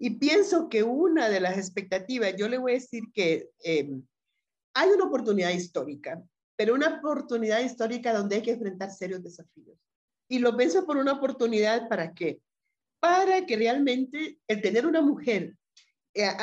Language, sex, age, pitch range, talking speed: Spanish, female, 40-59, 185-255 Hz, 160 wpm